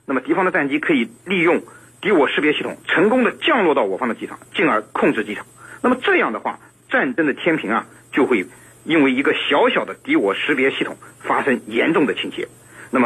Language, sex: Chinese, male